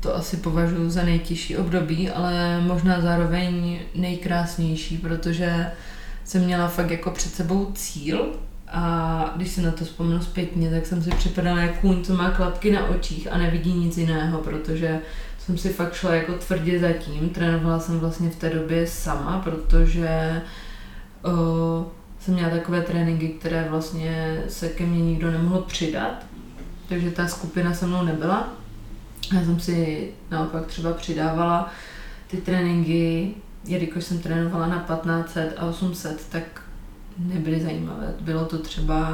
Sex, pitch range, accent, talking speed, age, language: female, 165-180 Hz, native, 145 wpm, 20-39, Czech